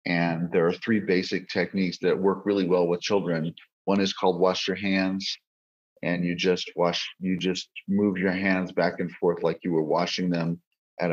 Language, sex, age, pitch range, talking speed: English, male, 40-59, 85-95 Hz, 195 wpm